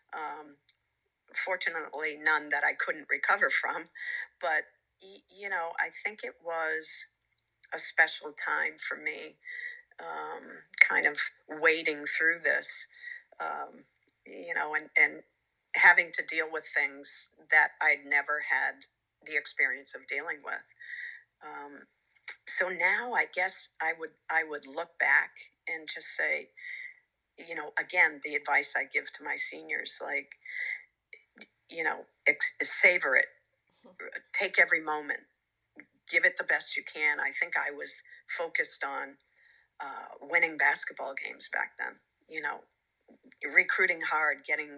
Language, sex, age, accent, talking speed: English, female, 50-69, American, 135 wpm